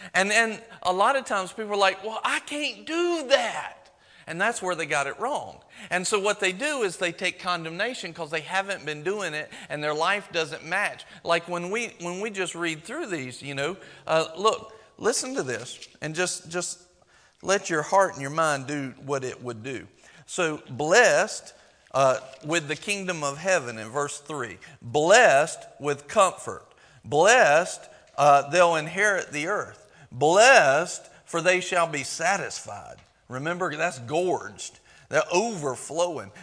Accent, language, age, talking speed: American, English, 50-69, 170 wpm